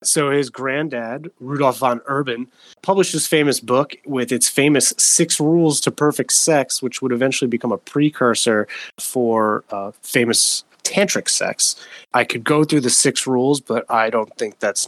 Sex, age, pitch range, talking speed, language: male, 20-39, 120-150 Hz, 165 wpm, English